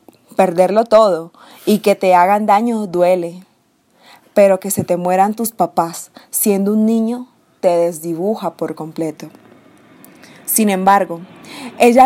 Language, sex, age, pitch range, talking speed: Spanish, female, 20-39, 185-235 Hz, 125 wpm